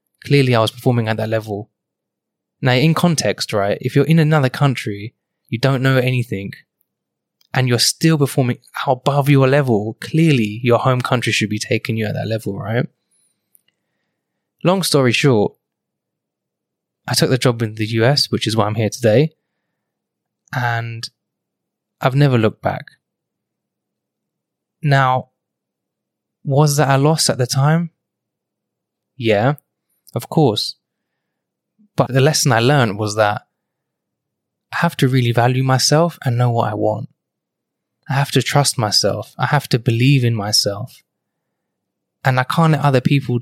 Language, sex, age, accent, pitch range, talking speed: English, male, 20-39, British, 115-140 Hz, 150 wpm